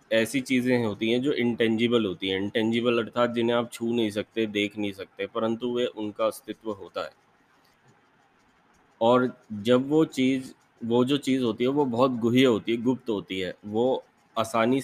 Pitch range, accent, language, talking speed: 110-125 Hz, native, Hindi, 175 wpm